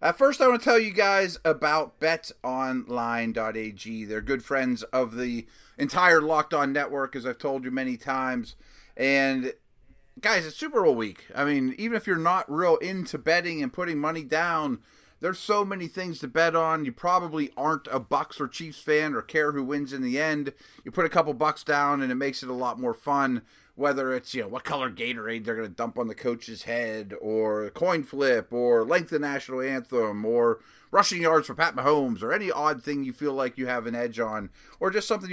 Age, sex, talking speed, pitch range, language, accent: 30-49, male, 210 wpm, 125-165 Hz, English, American